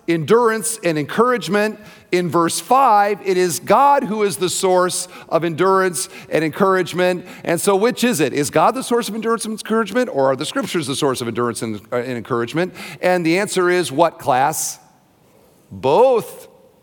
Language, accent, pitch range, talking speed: English, American, 170-225 Hz, 175 wpm